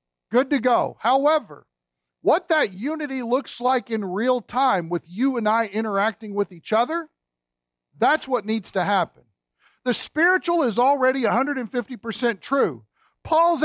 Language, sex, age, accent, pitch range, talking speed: English, male, 50-69, American, 210-275 Hz, 140 wpm